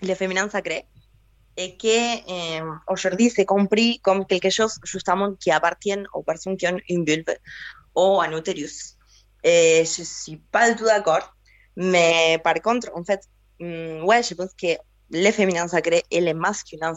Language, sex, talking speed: French, female, 165 wpm